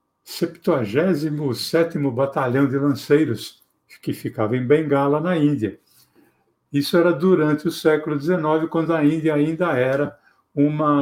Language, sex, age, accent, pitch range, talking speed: Portuguese, male, 60-79, Brazilian, 135-175 Hz, 120 wpm